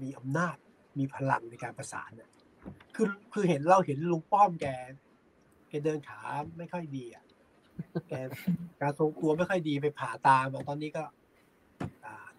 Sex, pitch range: male, 135-175 Hz